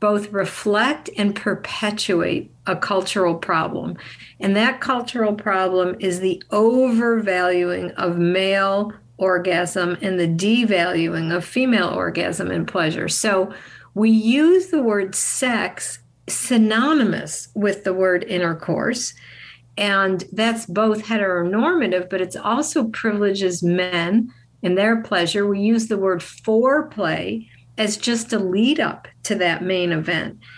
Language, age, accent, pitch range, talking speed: English, 50-69, American, 180-220 Hz, 120 wpm